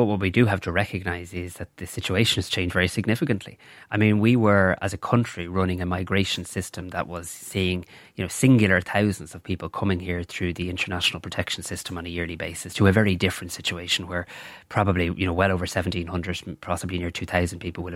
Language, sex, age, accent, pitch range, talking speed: English, male, 20-39, Irish, 90-105 Hz, 210 wpm